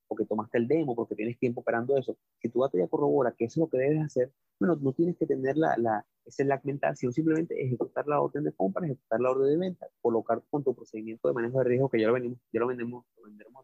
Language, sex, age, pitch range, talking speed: Spanish, male, 30-49, 115-145 Hz, 260 wpm